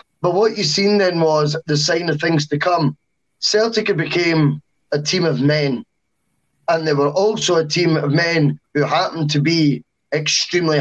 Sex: male